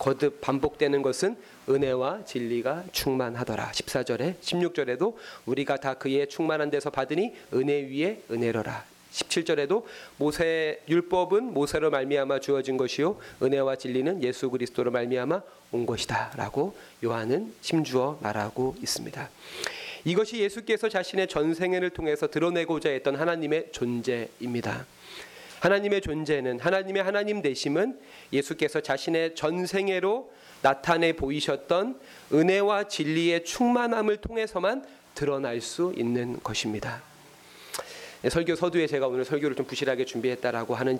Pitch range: 130-180 Hz